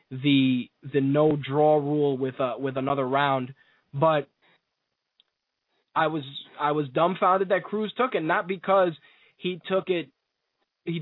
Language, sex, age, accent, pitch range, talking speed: English, male, 20-39, American, 150-175 Hz, 140 wpm